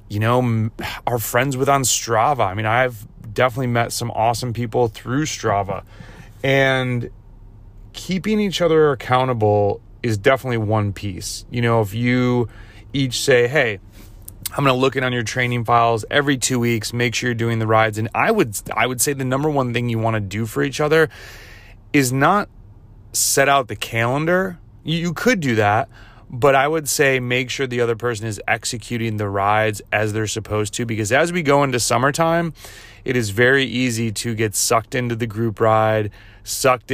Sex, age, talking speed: male, 30-49, 185 wpm